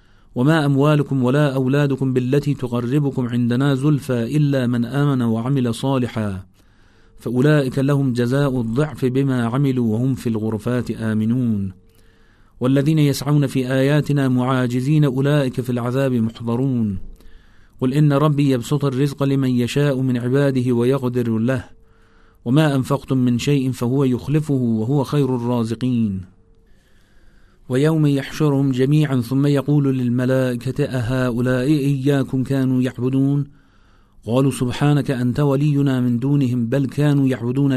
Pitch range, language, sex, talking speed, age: 120-140 Hz, Persian, male, 115 wpm, 40-59